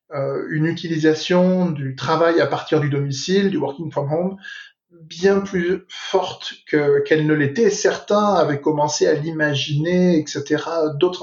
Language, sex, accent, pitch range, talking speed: French, male, French, 150-175 Hz, 145 wpm